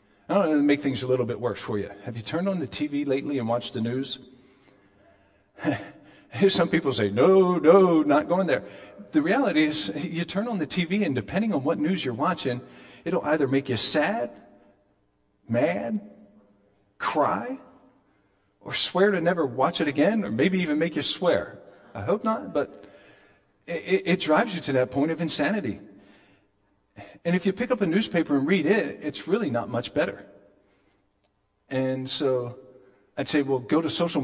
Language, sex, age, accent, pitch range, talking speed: English, male, 40-59, American, 105-160 Hz, 175 wpm